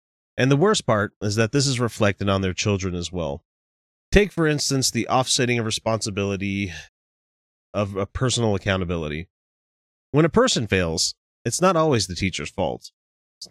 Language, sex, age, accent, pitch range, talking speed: English, male, 30-49, American, 90-120 Hz, 160 wpm